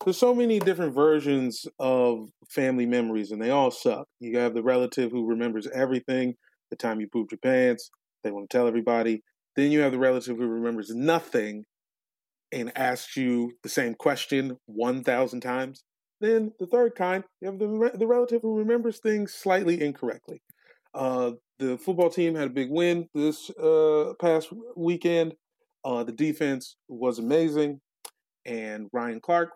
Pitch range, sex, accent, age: 120-180 Hz, male, American, 30-49